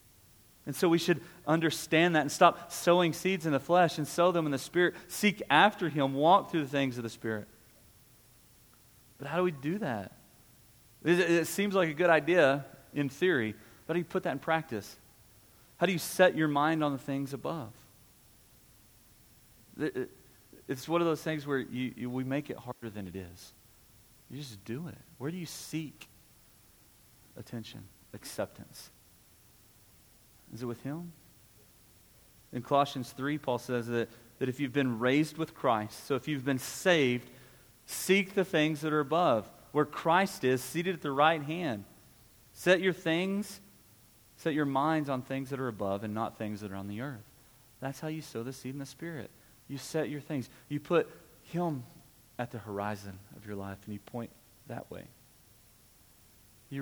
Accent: American